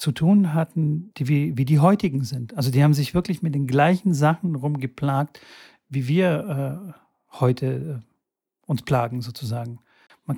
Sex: male